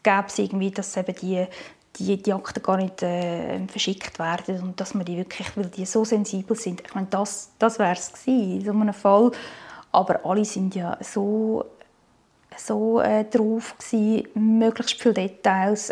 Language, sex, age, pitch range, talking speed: German, female, 20-39, 205-245 Hz, 175 wpm